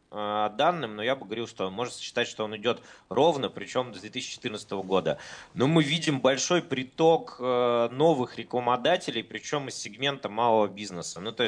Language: Russian